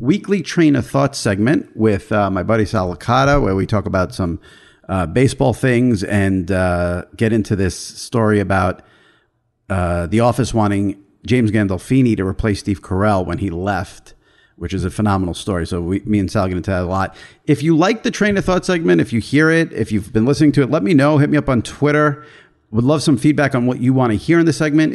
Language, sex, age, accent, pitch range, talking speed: English, male, 40-59, American, 100-140 Hz, 225 wpm